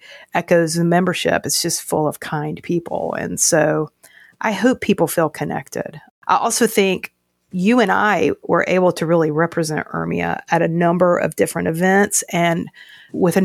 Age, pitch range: 40-59, 155-180 Hz